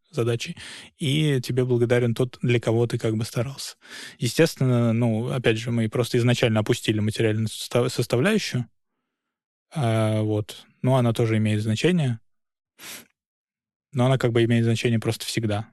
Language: Russian